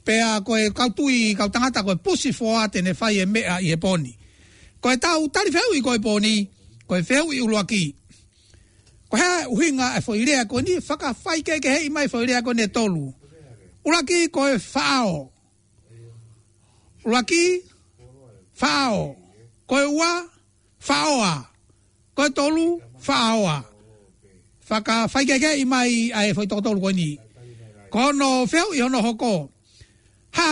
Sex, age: male, 60-79